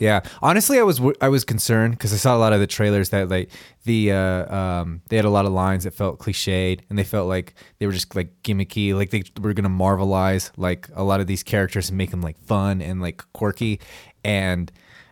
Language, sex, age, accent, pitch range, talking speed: English, male, 20-39, American, 95-115 Hz, 230 wpm